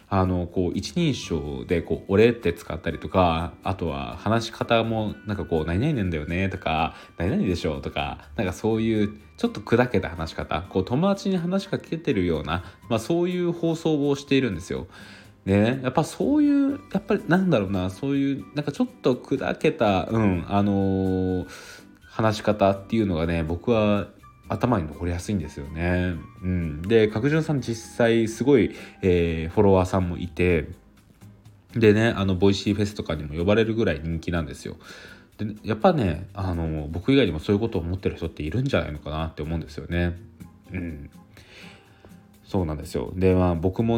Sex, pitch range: male, 85-115 Hz